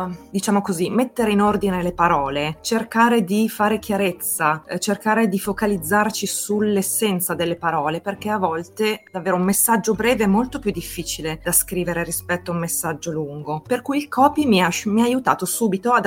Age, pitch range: 20-39, 155-210 Hz